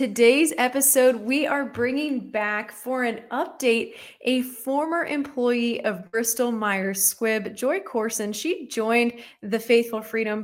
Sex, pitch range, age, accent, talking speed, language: female, 205-255 Hz, 20-39, American, 130 wpm, English